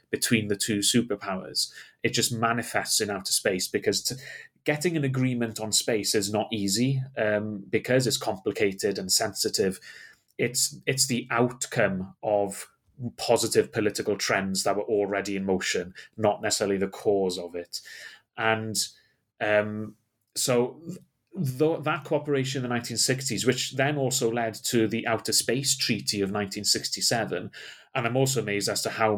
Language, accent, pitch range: English, British, 105-130 Hz